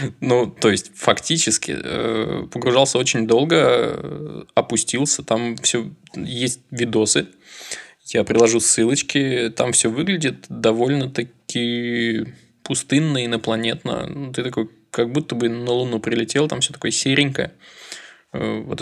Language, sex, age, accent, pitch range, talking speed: Russian, male, 20-39, native, 115-135 Hz, 110 wpm